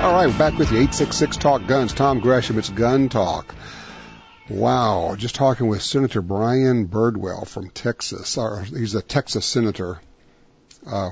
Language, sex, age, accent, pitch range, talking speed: English, male, 50-69, American, 100-125 Hz, 140 wpm